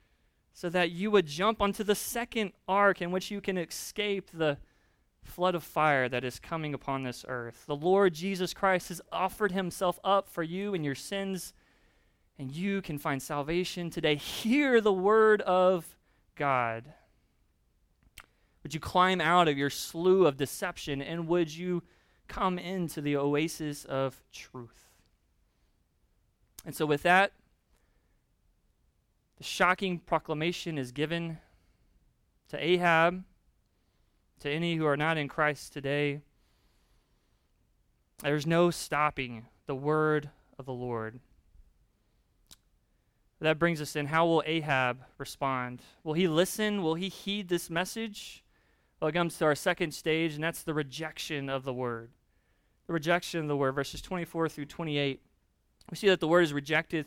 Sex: male